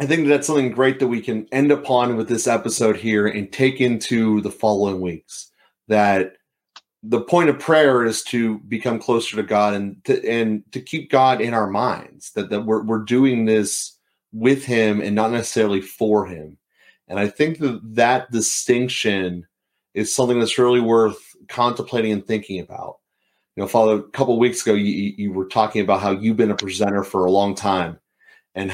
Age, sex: 30-49, male